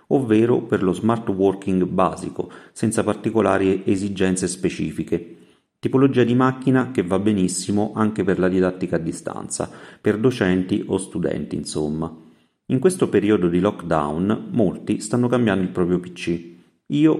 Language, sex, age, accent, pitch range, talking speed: Italian, male, 40-59, native, 90-110 Hz, 135 wpm